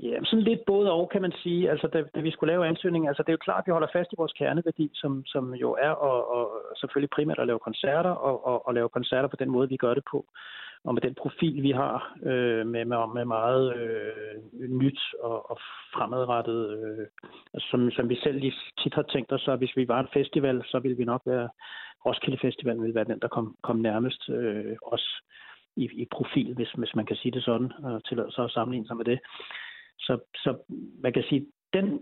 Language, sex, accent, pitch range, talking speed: Danish, male, native, 115-145 Hz, 230 wpm